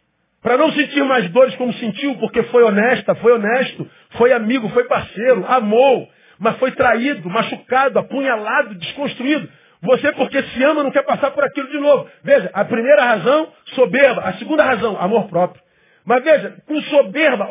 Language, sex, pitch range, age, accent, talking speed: Portuguese, male, 175-275 Hz, 50-69, Brazilian, 165 wpm